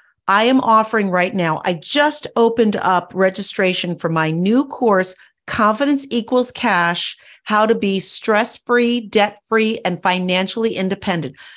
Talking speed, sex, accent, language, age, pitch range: 130 wpm, female, American, English, 40-59, 195-255 Hz